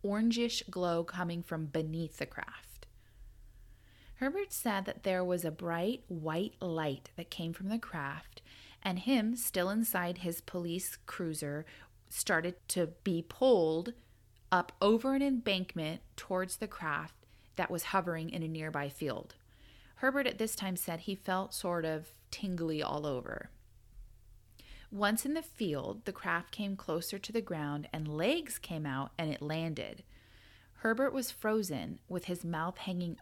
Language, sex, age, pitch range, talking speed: English, female, 30-49, 125-195 Hz, 150 wpm